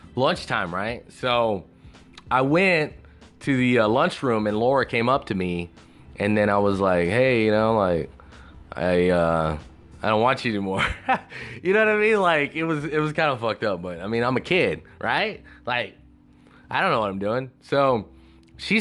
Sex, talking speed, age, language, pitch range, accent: male, 195 wpm, 20-39, English, 85-135 Hz, American